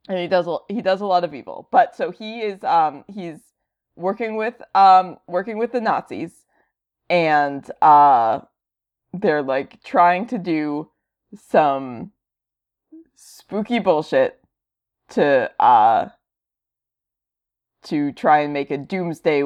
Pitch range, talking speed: 150-220 Hz, 125 wpm